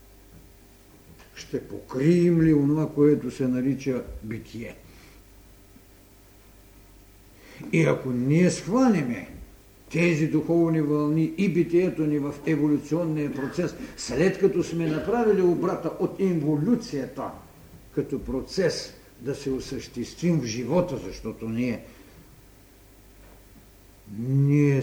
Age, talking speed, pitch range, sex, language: 60-79, 90 wpm, 110-170 Hz, male, Bulgarian